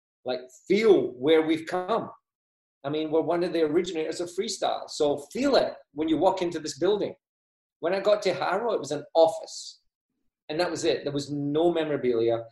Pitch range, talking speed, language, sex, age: 135-180 Hz, 190 wpm, English, male, 30-49